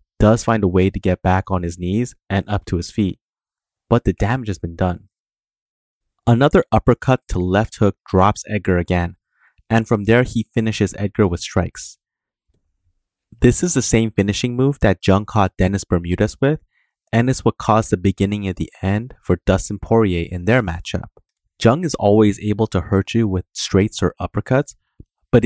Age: 20-39